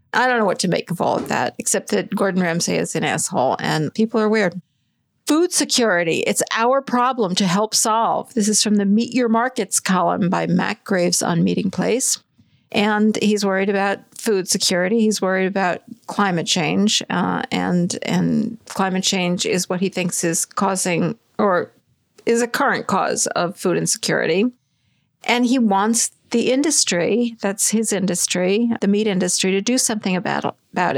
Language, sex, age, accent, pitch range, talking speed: English, female, 50-69, American, 190-230 Hz, 170 wpm